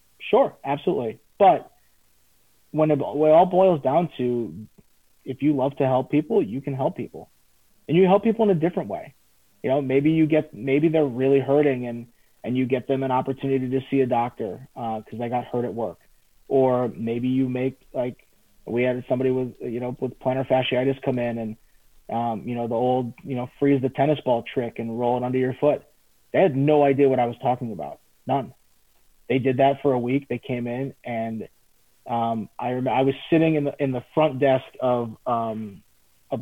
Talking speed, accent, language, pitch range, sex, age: 205 wpm, American, English, 120-140 Hz, male, 30-49